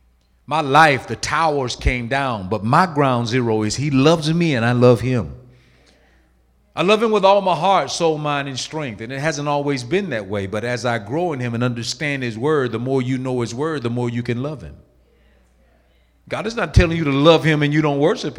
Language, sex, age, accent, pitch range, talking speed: English, male, 50-69, American, 95-150 Hz, 230 wpm